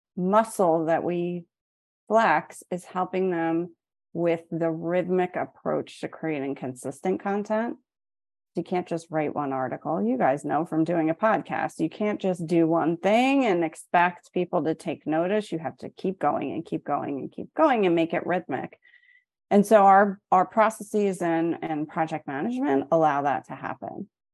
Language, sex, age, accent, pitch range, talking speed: English, female, 30-49, American, 160-205 Hz, 170 wpm